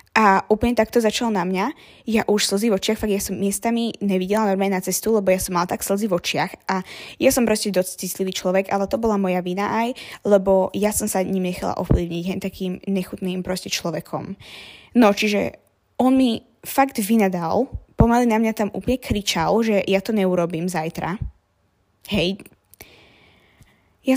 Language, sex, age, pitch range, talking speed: Slovak, female, 20-39, 190-220 Hz, 175 wpm